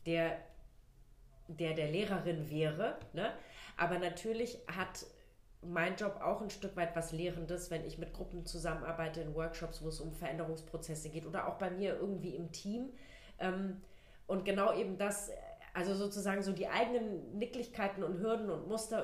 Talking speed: 160 wpm